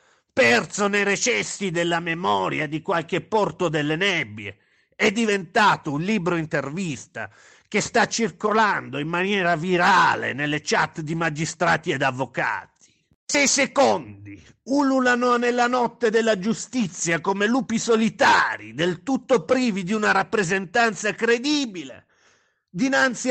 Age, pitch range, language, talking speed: 50-69, 155-230 Hz, Italian, 120 wpm